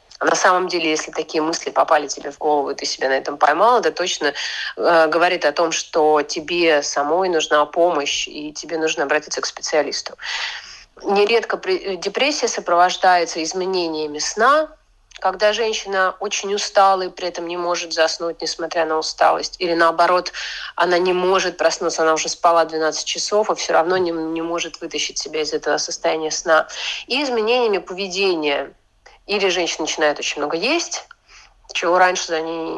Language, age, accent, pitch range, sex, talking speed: Russian, 30-49, native, 160-195 Hz, female, 165 wpm